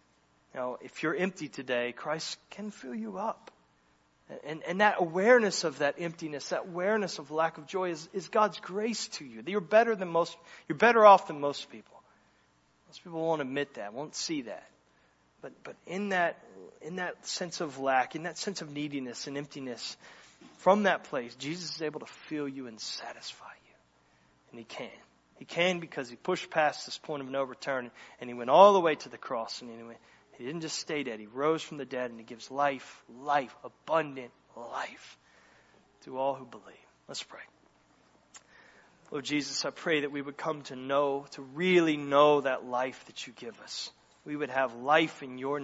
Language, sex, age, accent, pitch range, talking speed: English, male, 30-49, American, 125-165 Hz, 195 wpm